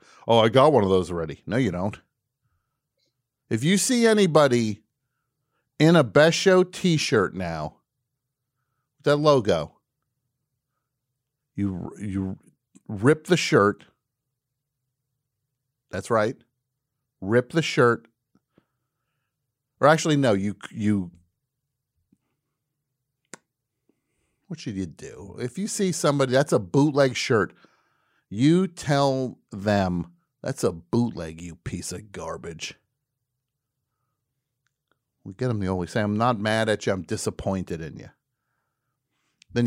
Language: English